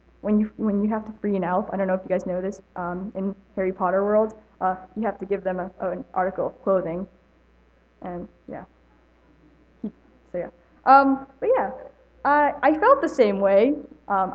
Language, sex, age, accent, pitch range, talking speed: English, female, 10-29, American, 185-250 Hz, 190 wpm